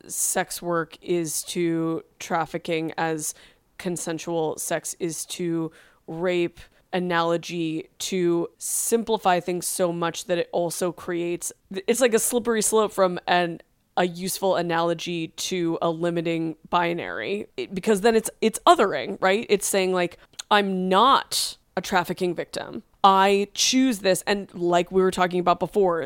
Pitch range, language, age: 170-200 Hz, English, 20-39